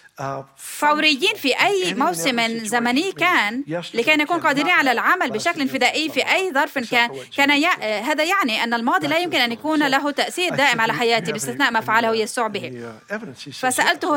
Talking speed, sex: 160 wpm, female